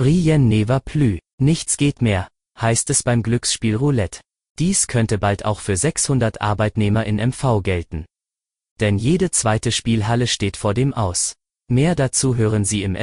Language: German